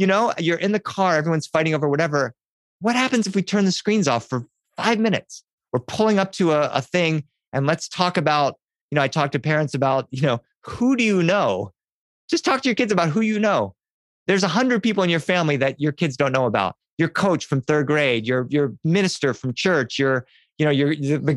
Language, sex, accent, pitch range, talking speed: English, male, American, 135-180 Hz, 235 wpm